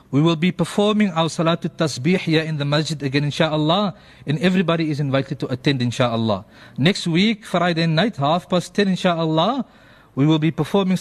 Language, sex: English, male